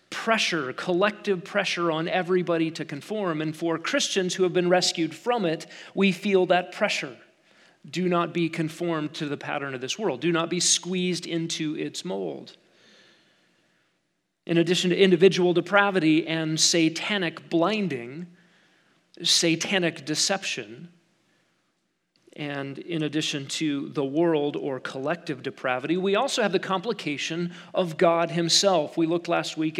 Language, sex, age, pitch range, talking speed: English, male, 40-59, 160-190 Hz, 135 wpm